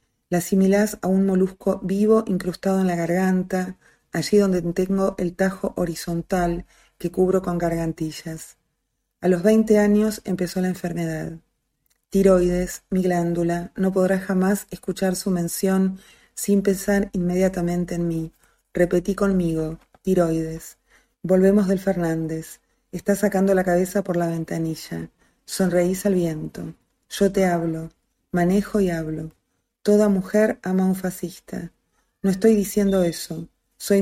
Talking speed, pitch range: 130 wpm, 170-195 Hz